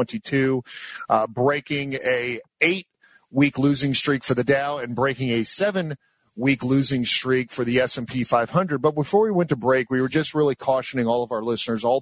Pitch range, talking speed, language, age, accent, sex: 120-140 Hz, 175 wpm, English, 40-59, American, male